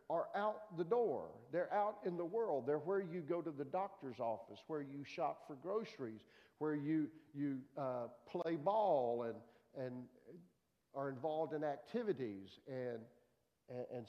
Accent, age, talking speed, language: American, 50-69, 155 wpm, English